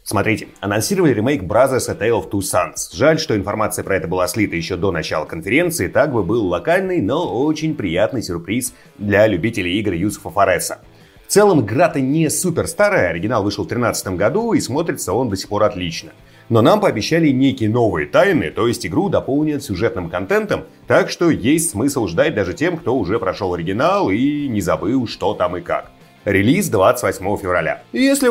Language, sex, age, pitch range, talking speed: Russian, male, 30-49, 105-160 Hz, 180 wpm